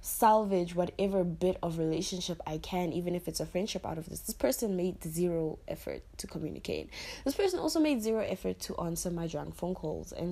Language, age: English, 10-29